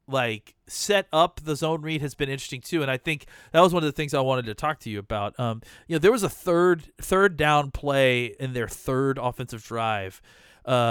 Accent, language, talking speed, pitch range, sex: American, English, 230 wpm, 125-170 Hz, male